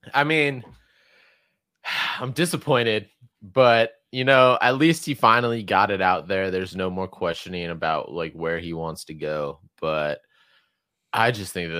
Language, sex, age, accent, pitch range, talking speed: English, male, 20-39, American, 90-120 Hz, 160 wpm